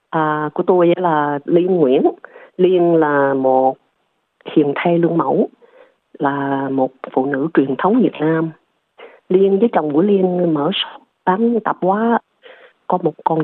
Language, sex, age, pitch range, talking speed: Vietnamese, female, 30-49, 150-205 Hz, 145 wpm